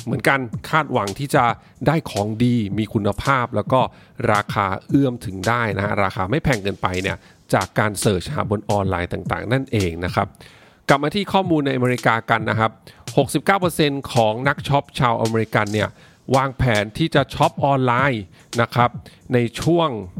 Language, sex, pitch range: English, male, 110-140 Hz